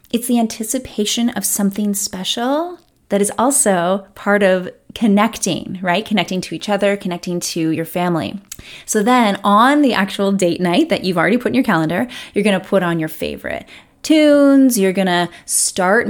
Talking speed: 175 wpm